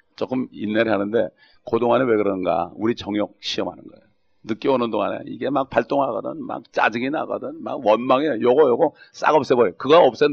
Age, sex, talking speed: 40-59, male, 155 wpm